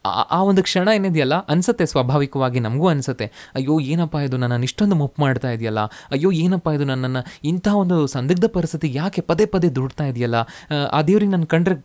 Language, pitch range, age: Kannada, 115-165 Hz, 20-39